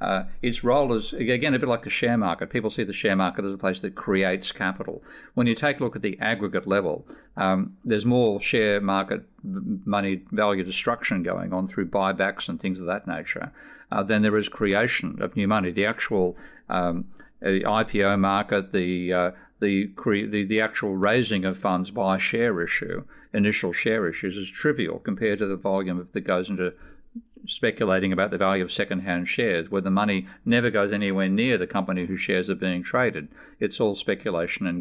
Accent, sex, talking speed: Australian, male, 195 wpm